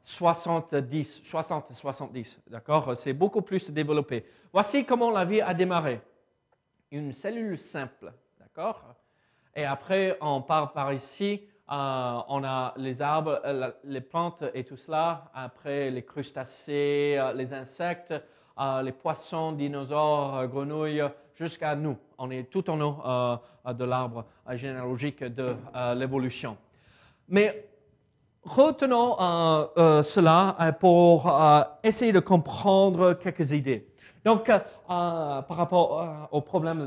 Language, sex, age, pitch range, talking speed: French, male, 40-59, 130-180 Hz, 120 wpm